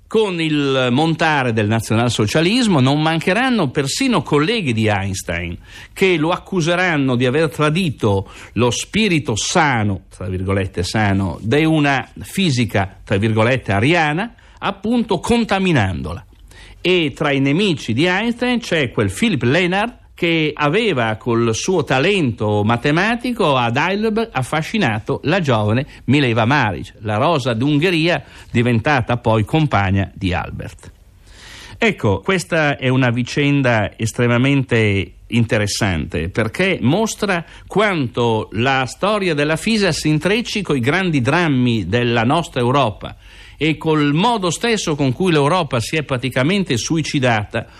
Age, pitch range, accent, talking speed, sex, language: 60-79, 110-165 Hz, native, 120 wpm, male, Italian